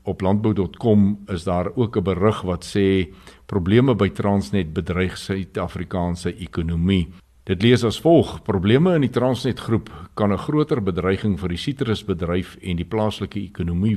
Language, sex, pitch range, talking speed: Swedish, male, 90-105 Hz, 150 wpm